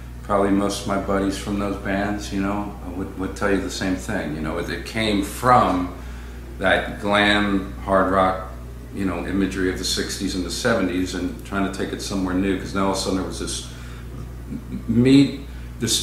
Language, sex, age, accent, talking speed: English, male, 50-69, American, 200 wpm